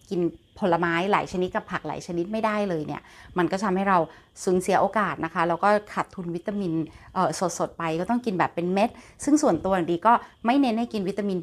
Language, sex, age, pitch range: Thai, female, 30-49, 170-215 Hz